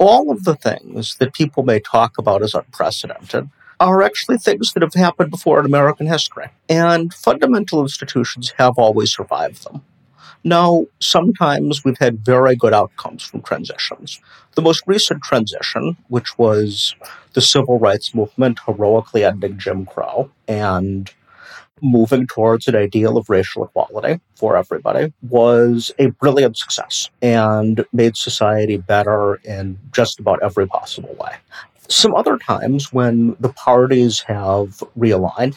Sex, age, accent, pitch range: male, 50-69, American, 105-145 Hz